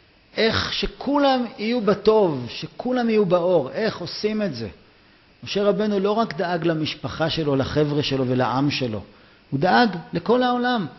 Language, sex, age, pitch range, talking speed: Hebrew, male, 40-59, 125-185 Hz, 140 wpm